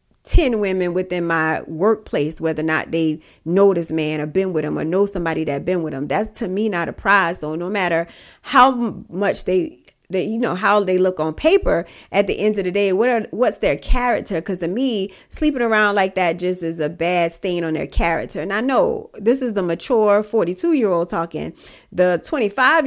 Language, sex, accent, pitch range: English, female, American, 175-225 Hz